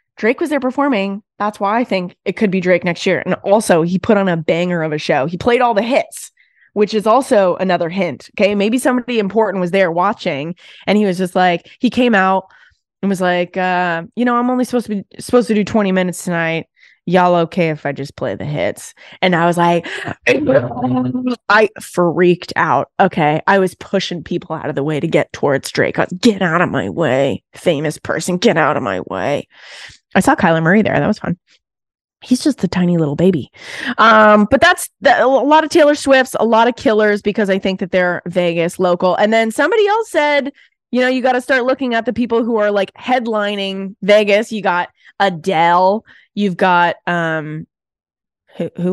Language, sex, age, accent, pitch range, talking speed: English, female, 20-39, American, 175-225 Hz, 205 wpm